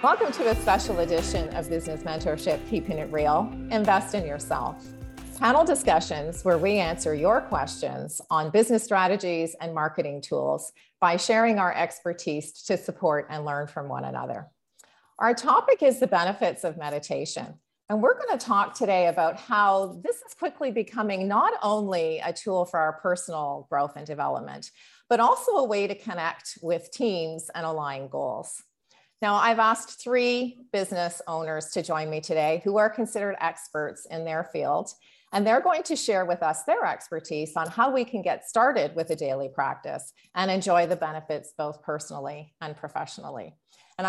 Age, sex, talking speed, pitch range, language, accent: 30-49, female, 165 wpm, 155-215 Hz, English, American